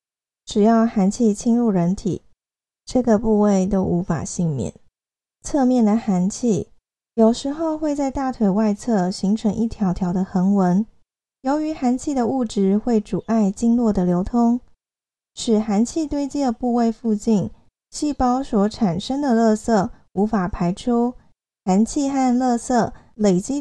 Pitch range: 190-250 Hz